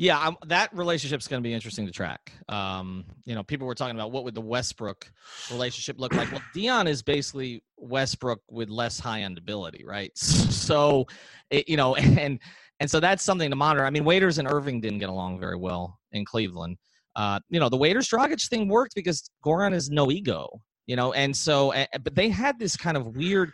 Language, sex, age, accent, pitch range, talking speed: English, male, 30-49, American, 125-175 Hz, 205 wpm